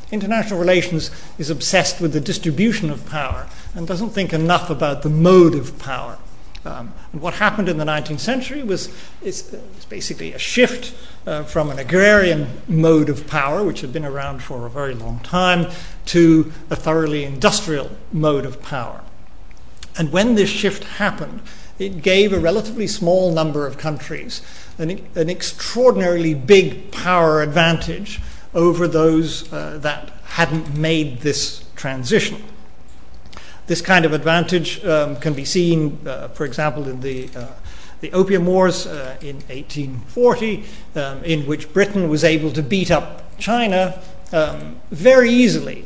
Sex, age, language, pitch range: male, 50-69, English, 150-185 Hz